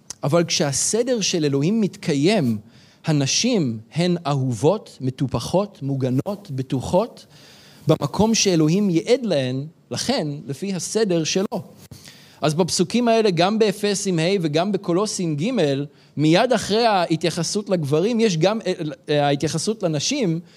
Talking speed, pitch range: 105 wpm, 140-185 Hz